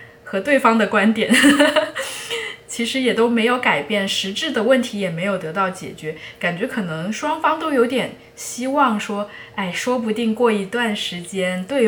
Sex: female